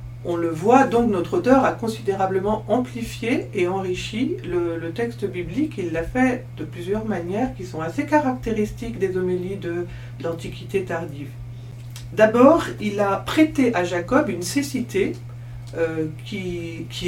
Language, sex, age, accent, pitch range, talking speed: French, female, 50-69, French, 120-190 Hz, 145 wpm